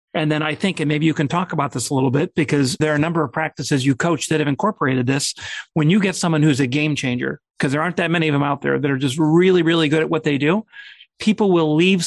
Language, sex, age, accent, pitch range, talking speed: English, male, 40-59, American, 140-170 Hz, 285 wpm